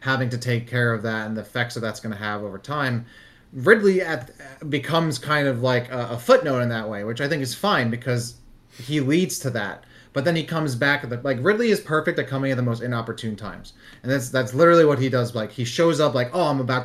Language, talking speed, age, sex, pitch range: English, 255 wpm, 30-49, male, 120-155 Hz